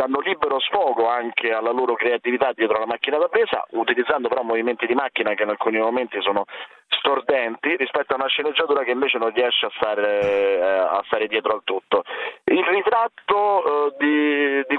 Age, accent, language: 30-49, native, Italian